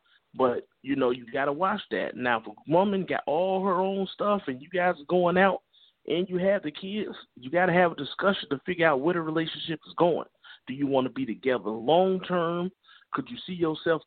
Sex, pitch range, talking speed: male, 155-210 Hz, 220 wpm